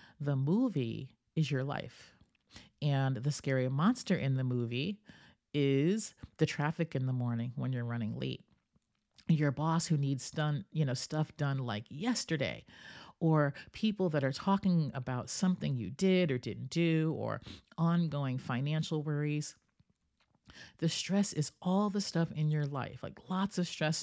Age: 40-59